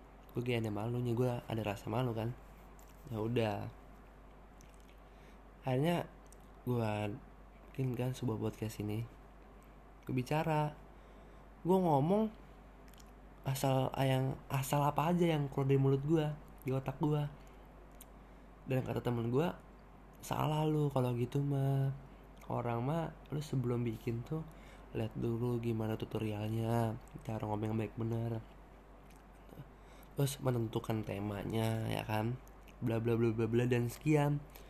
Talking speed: 120 wpm